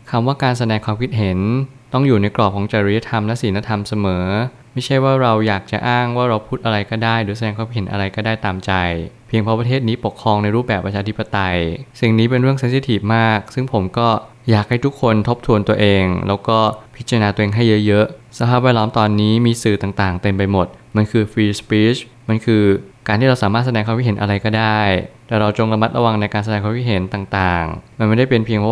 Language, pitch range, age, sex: Thai, 105-120 Hz, 20-39, male